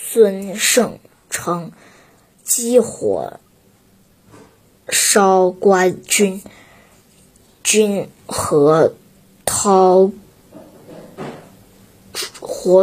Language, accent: Chinese, native